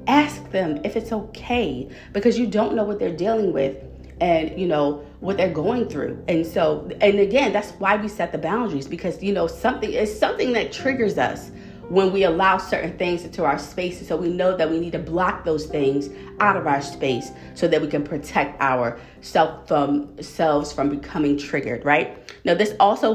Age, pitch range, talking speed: 30-49, 155-215 Hz, 195 wpm